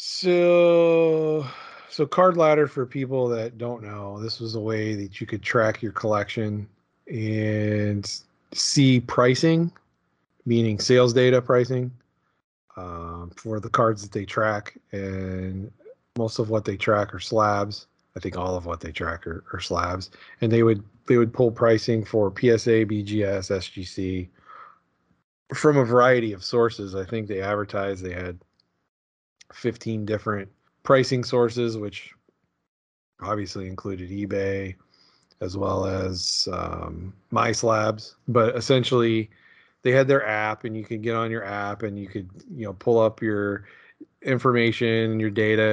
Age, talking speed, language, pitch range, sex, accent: 30-49, 145 wpm, English, 100-115 Hz, male, American